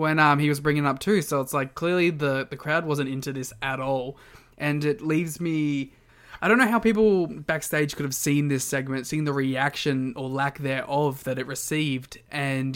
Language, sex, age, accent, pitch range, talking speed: English, male, 20-39, Australian, 135-155 Hz, 210 wpm